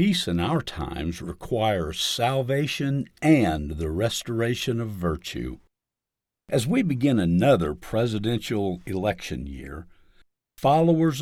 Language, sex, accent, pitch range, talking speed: English, male, American, 90-140 Hz, 100 wpm